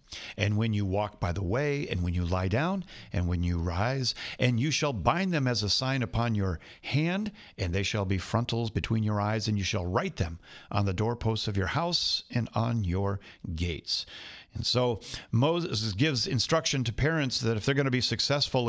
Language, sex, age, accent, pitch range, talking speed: English, male, 50-69, American, 105-145 Hz, 205 wpm